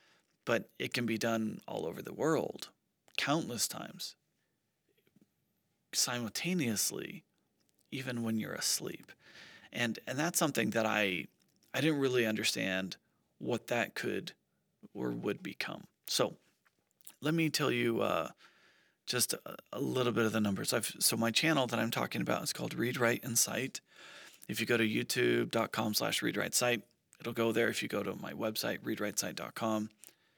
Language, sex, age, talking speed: English, male, 40-59, 150 wpm